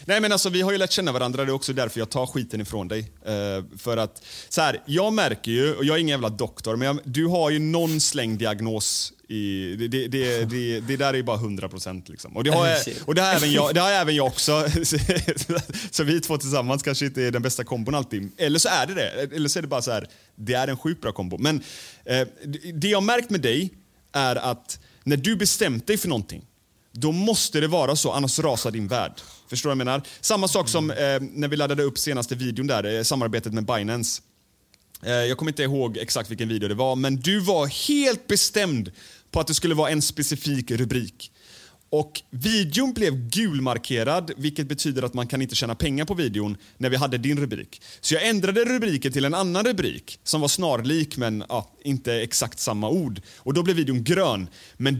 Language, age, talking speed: Swedish, 30-49, 220 wpm